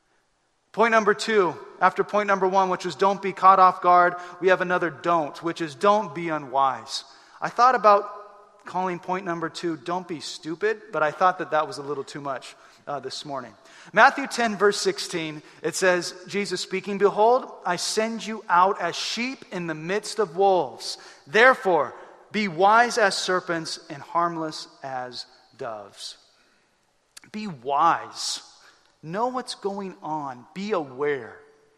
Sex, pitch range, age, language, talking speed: male, 145-200 Hz, 40-59, English, 155 wpm